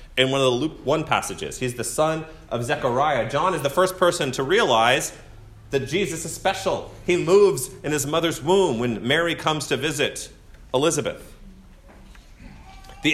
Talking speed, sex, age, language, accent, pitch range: 165 wpm, male, 30-49, English, American, 125-170 Hz